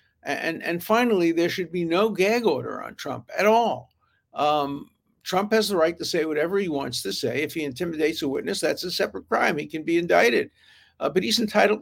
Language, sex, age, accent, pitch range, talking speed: English, male, 60-79, American, 130-180 Hz, 215 wpm